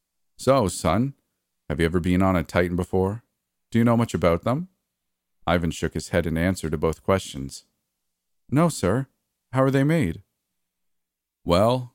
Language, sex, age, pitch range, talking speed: English, male, 40-59, 80-105 Hz, 160 wpm